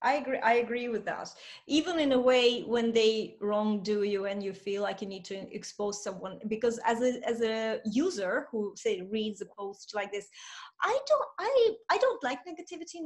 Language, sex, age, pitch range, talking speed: English, female, 20-39, 225-315 Hz, 200 wpm